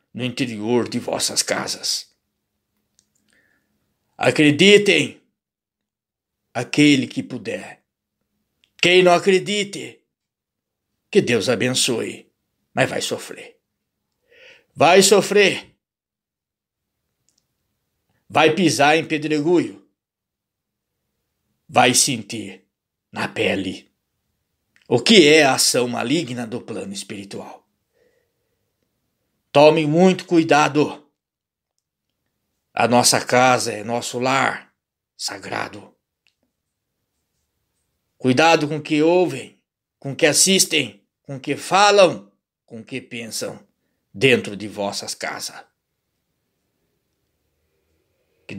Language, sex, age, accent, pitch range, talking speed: Portuguese, male, 60-79, Brazilian, 120-180 Hz, 80 wpm